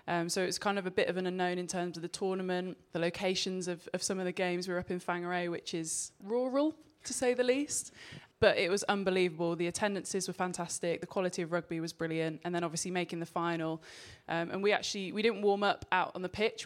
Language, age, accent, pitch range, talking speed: English, 20-39, British, 165-185 Hz, 245 wpm